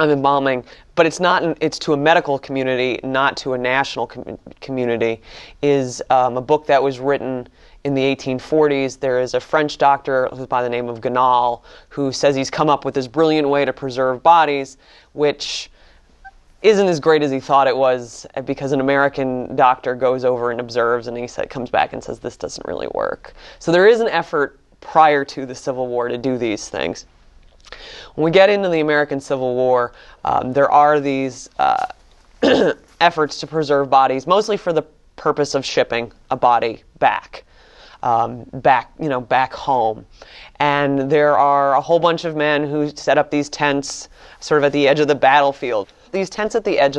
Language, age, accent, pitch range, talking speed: English, 20-39, American, 130-150 Hz, 190 wpm